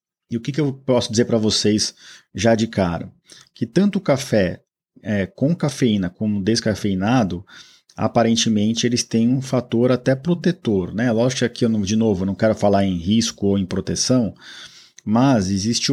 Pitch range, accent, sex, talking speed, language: 105-130 Hz, Brazilian, male, 160 wpm, Portuguese